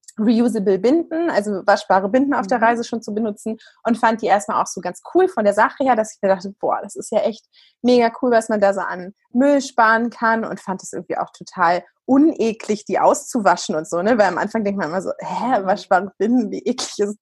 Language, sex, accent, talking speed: German, female, German, 235 wpm